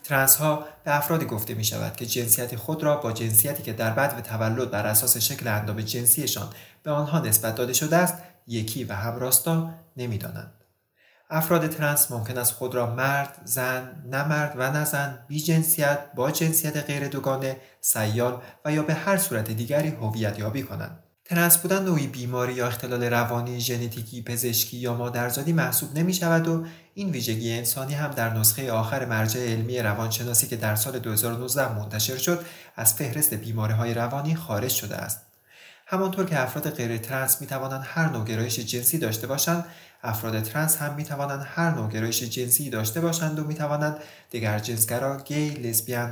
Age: 30-49